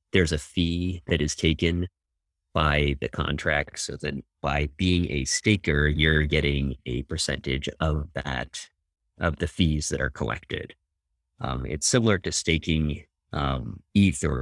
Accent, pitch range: American, 75-95 Hz